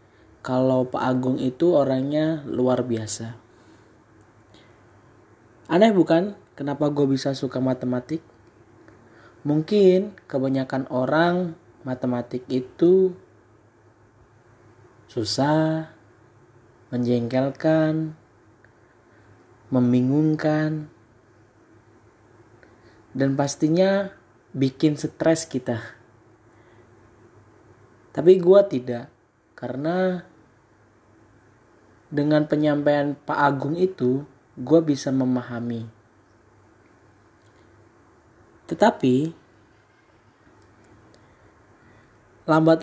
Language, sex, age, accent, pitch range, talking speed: Indonesian, male, 20-39, native, 115-150 Hz, 55 wpm